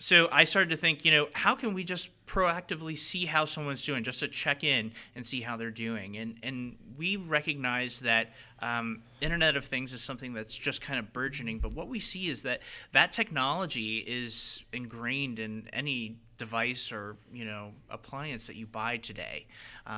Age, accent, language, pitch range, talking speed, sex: 30-49, American, English, 110-135 Hz, 190 wpm, male